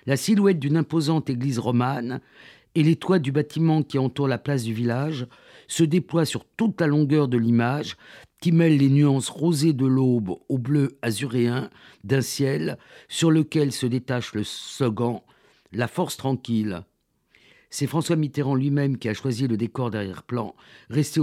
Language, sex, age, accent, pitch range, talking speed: French, male, 50-69, French, 120-150 Hz, 160 wpm